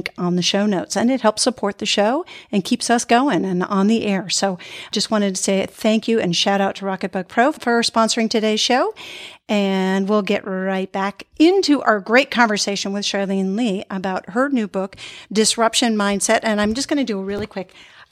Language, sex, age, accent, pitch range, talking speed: English, female, 50-69, American, 205-275 Hz, 210 wpm